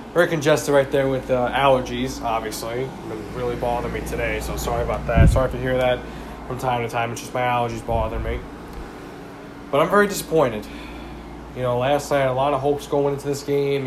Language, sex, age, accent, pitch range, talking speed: English, male, 20-39, American, 125-145 Hz, 205 wpm